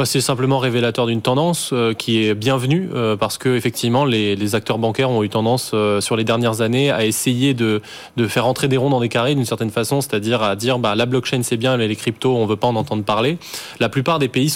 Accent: French